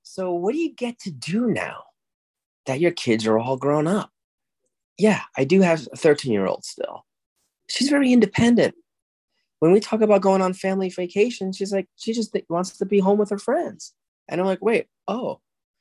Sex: male